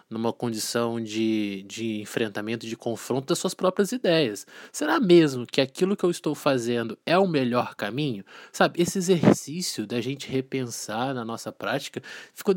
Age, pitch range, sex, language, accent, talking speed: 20-39, 145-195 Hz, male, Portuguese, Brazilian, 160 wpm